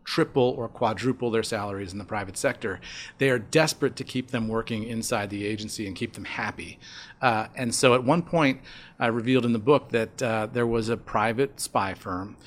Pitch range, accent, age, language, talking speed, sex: 110-135 Hz, American, 40-59, English, 200 wpm, male